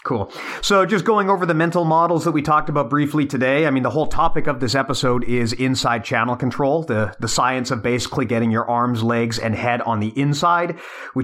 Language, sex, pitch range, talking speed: English, male, 130-155 Hz, 220 wpm